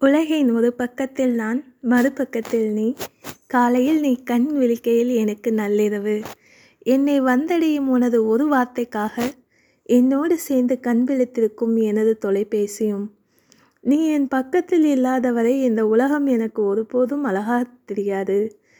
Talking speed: 110 wpm